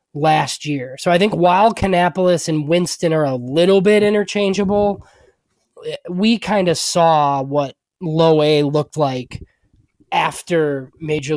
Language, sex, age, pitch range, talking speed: English, male, 20-39, 145-175 Hz, 130 wpm